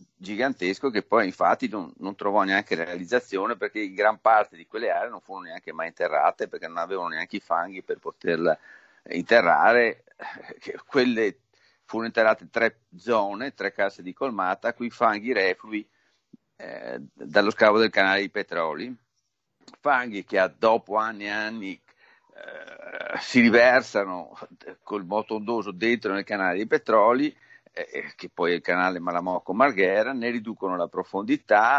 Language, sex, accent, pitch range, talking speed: Italian, male, native, 100-125 Hz, 145 wpm